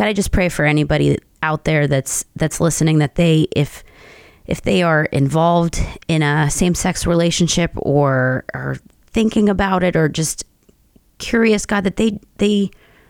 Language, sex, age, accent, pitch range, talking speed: English, female, 30-49, American, 140-165 Hz, 160 wpm